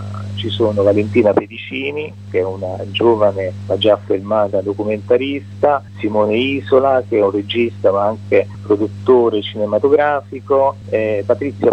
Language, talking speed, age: Italian, 125 wpm, 40-59